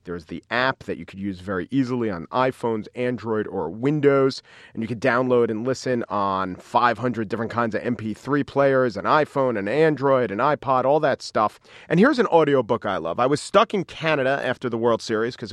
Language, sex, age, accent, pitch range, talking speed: English, male, 40-59, American, 115-140 Hz, 200 wpm